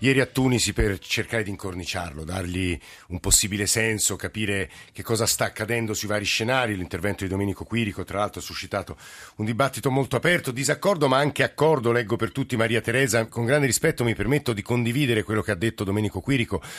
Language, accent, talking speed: Italian, native, 190 wpm